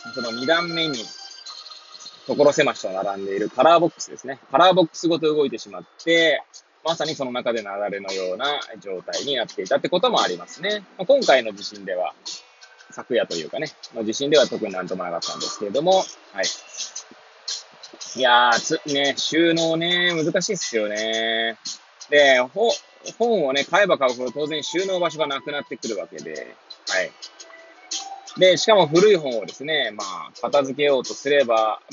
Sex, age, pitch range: male, 20-39, 130-210 Hz